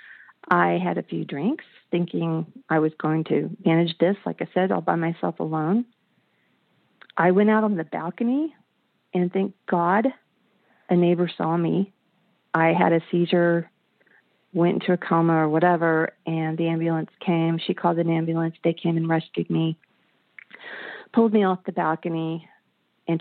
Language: English